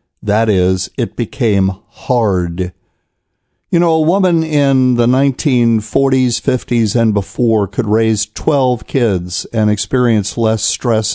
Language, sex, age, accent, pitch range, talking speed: English, male, 50-69, American, 105-130 Hz, 125 wpm